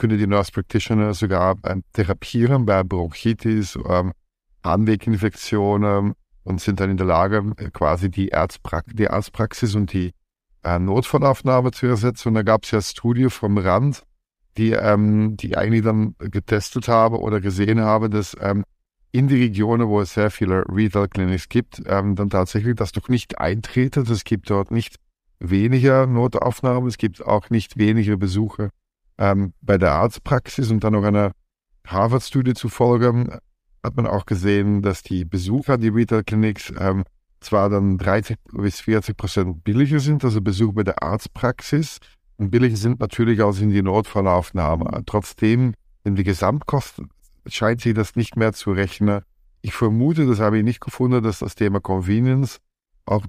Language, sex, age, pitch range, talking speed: German, male, 50-69, 95-115 Hz, 160 wpm